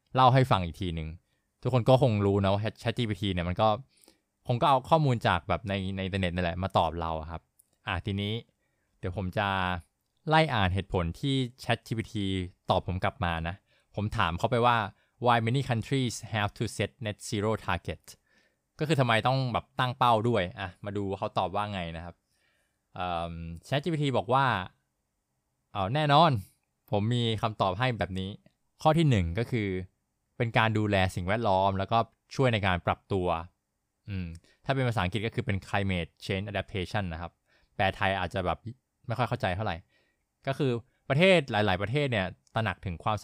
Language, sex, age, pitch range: Thai, male, 20-39, 95-120 Hz